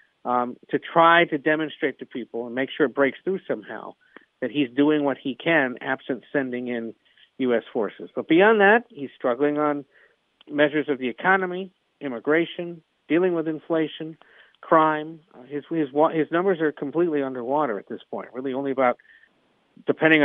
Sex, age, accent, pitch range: male, 50-69, American, 130-170 Hz